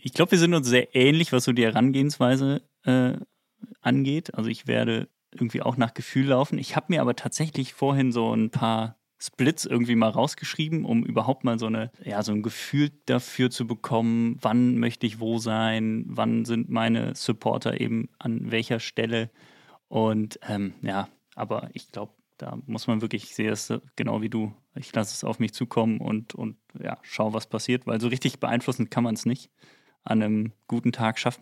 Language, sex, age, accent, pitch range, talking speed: German, male, 20-39, German, 115-135 Hz, 185 wpm